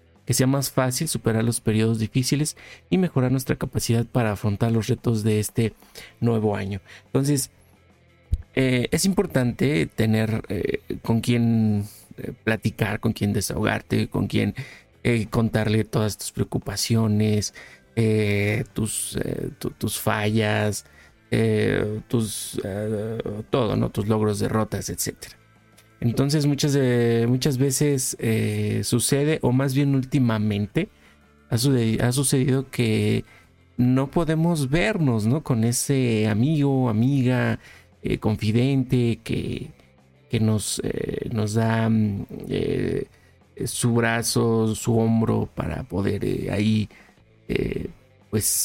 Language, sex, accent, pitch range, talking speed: Spanish, male, Mexican, 105-125 Hz, 110 wpm